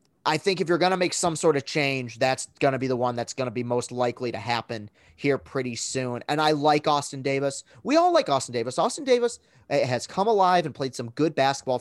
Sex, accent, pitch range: male, American, 125-160 Hz